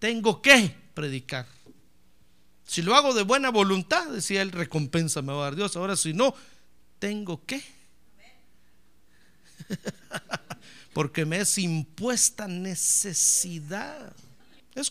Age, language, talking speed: 50-69, Spanish, 115 wpm